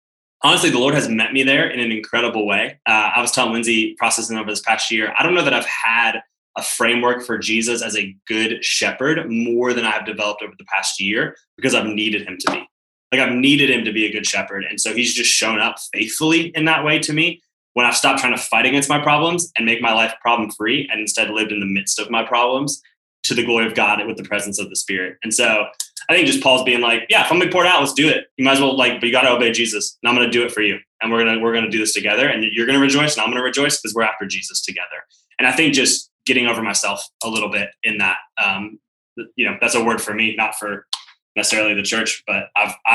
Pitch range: 105-125 Hz